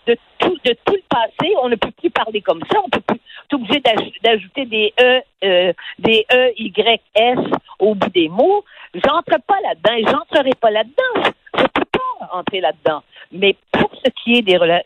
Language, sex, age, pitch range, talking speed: French, female, 50-69, 185-255 Hz, 195 wpm